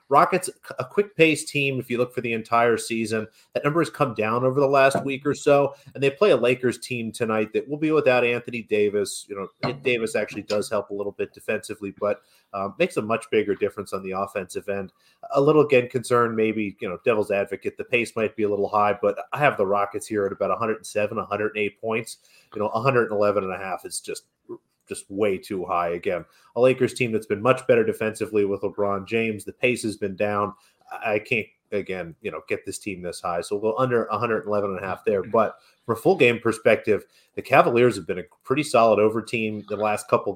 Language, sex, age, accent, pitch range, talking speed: English, male, 30-49, American, 105-125 Hz, 220 wpm